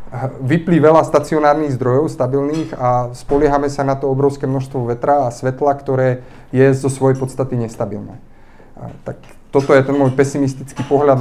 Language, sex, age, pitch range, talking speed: Slovak, male, 30-49, 120-135 Hz, 150 wpm